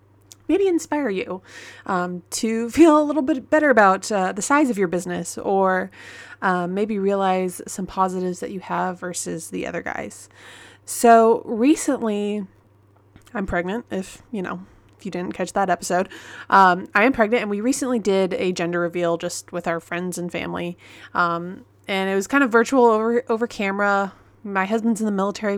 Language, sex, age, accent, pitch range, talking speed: English, female, 20-39, American, 180-225 Hz, 175 wpm